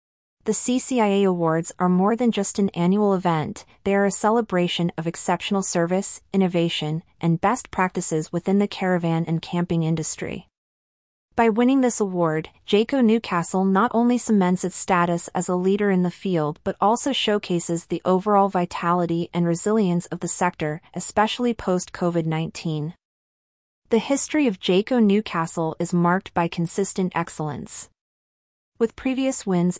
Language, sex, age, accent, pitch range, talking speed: English, female, 30-49, American, 170-205 Hz, 140 wpm